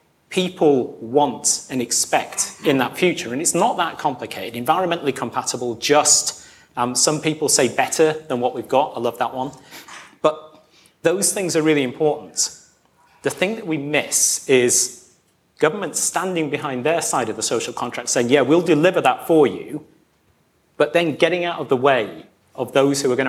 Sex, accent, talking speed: male, British, 175 wpm